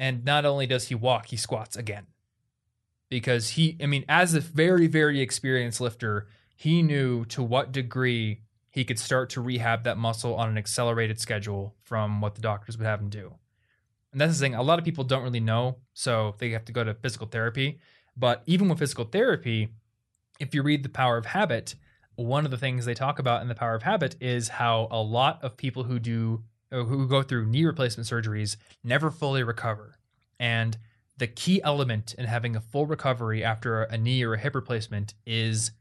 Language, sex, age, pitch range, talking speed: English, male, 20-39, 110-135 Hz, 200 wpm